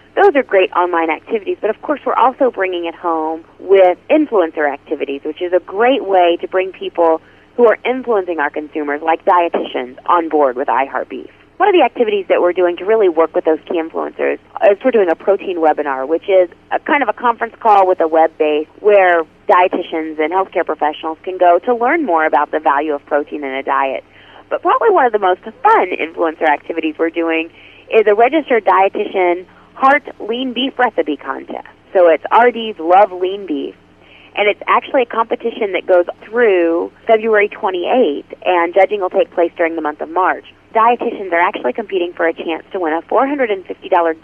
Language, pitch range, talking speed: English, 160-215 Hz, 195 wpm